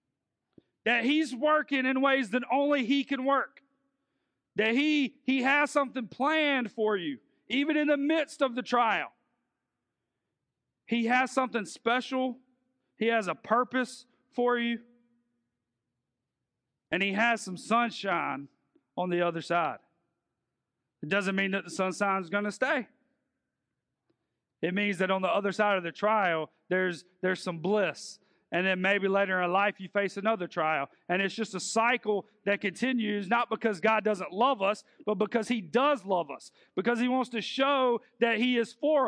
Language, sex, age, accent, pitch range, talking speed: English, male, 40-59, American, 190-255 Hz, 160 wpm